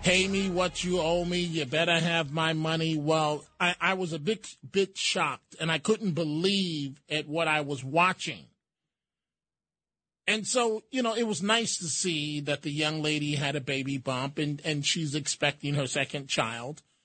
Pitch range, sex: 155-225 Hz, male